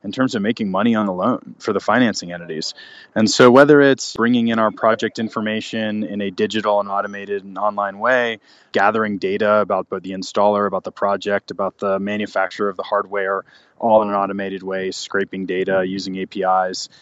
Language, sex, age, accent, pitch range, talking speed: English, male, 20-39, American, 100-115 Hz, 185 wpm